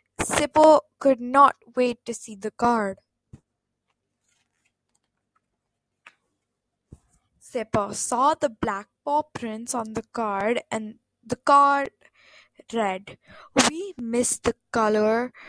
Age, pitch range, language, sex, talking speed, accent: 20-39, 225-305 Hz, English, female, 95 wpm, Indian